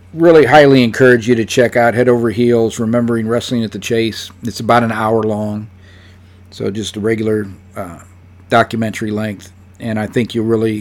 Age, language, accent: 50-69, English, American